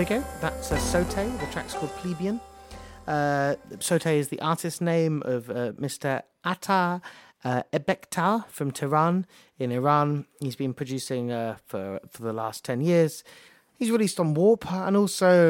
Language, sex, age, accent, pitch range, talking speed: English, male, 30-49, British, 125-165 Hz, 160 wpm